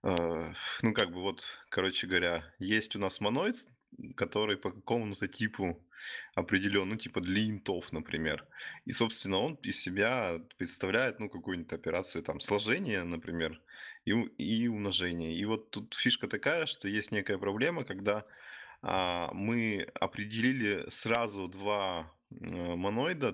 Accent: native